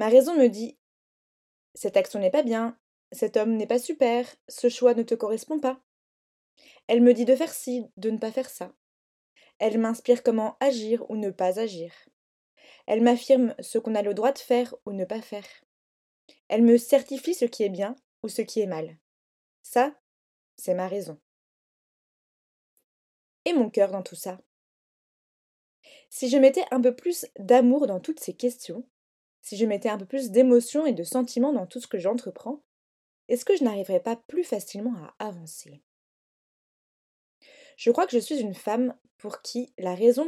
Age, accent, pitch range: 20-39, French, 205-260 Hz